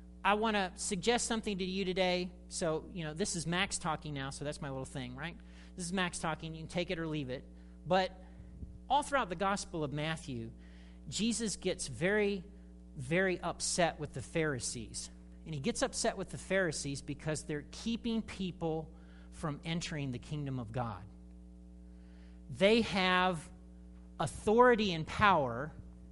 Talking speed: 160 wpm